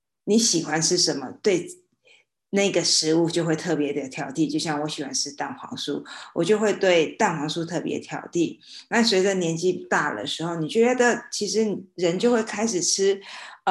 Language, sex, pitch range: Chinese, female, 160-205 Hz